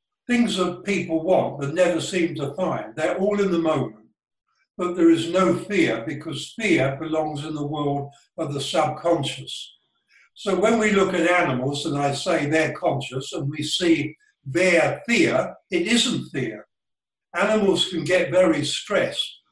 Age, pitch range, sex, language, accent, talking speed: 60-79, 150-190 Hz, male, English, British, 160 wpm